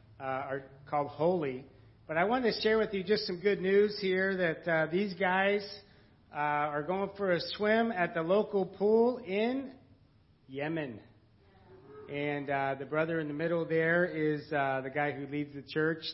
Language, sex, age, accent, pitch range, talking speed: English, male, 50-69, American, 145-195 Hz, 180 wpm